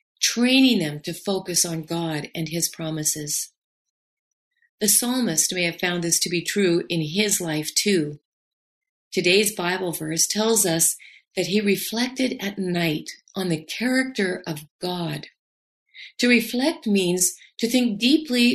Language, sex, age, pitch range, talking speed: English, female, 40-59, 170-225 Hz, 140 wpm